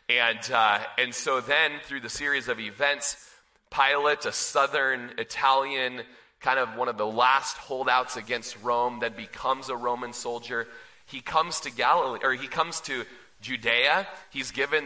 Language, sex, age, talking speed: English, male, 30-49, 160 wpm